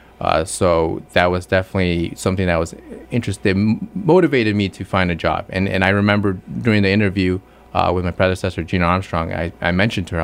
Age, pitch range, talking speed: 30-49, 85-100 Hz, 195 wpm